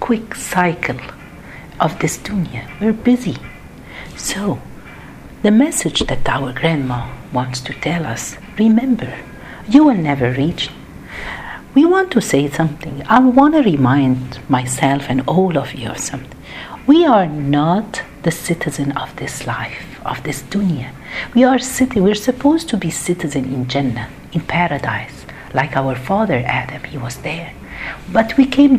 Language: Arabic